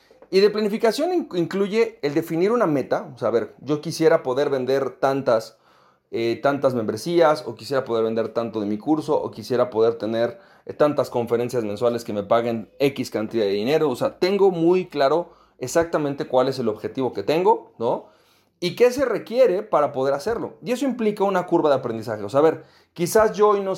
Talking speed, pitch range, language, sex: 195 wpm, 130-180 Hz, Spanish, male